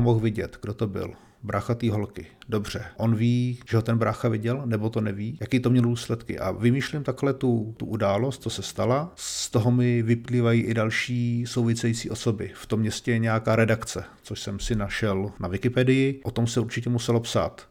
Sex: male